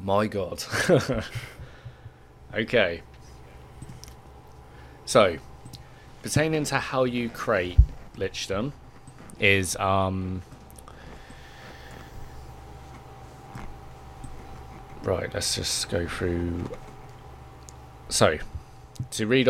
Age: 20-39